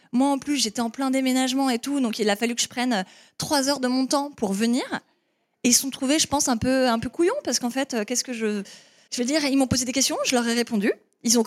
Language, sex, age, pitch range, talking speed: French, female, 20-39, 215-265 Hz, 290 wpm